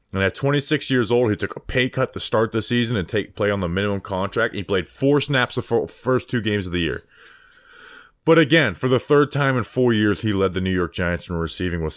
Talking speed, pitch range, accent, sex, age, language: 250 wpm, 100-155 Hz, American, male, 20-39, English